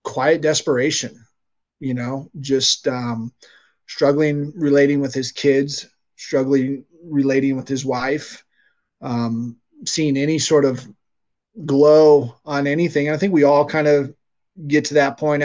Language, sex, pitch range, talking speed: English, male, 130-155 Hz, 130 wpm